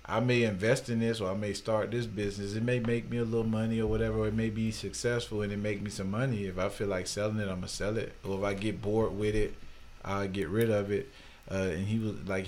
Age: 40-59